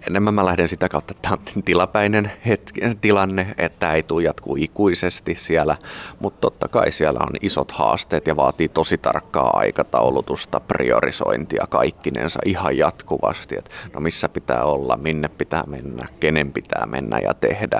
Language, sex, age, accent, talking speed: Finnish, male, 30-49, native, 160 wpm